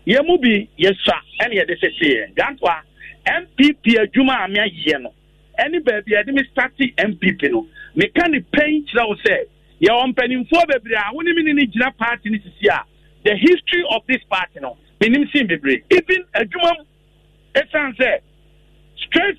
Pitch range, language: 195-305 Hz, English